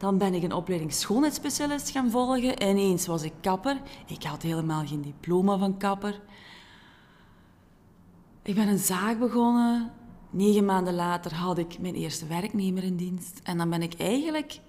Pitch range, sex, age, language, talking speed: 170-215 Hz, female, 30-49, Dutch, 165 wpm